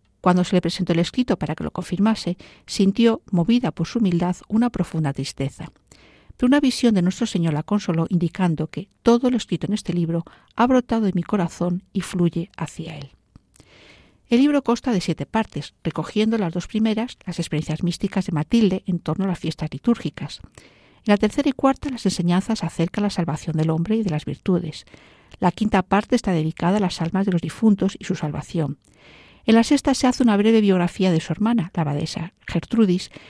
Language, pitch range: Spanish, 165-220 Hz